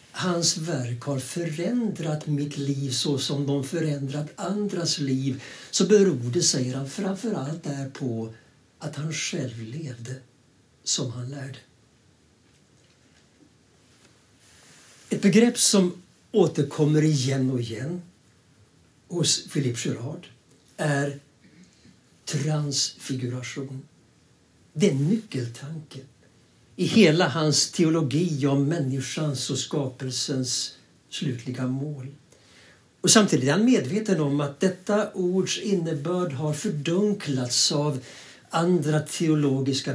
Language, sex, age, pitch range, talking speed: English, male, 60-79, 130-175 Hz, 95 wpm